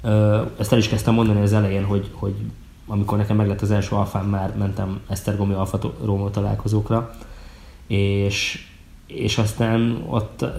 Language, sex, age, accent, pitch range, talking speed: English, male, 20-39, Finnish, 100-110 Hz, 140 wpm